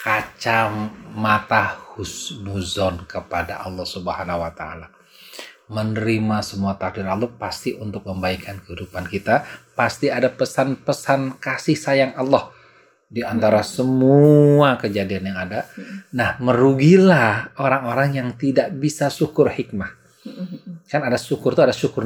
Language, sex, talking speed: Indonesian, male, 115 wpm